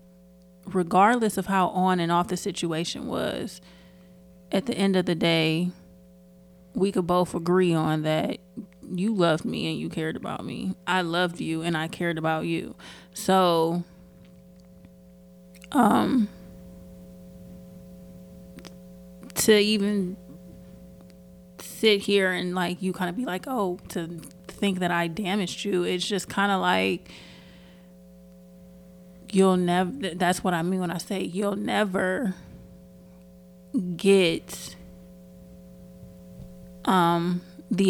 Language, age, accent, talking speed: English, 30-49, American, 120 wpm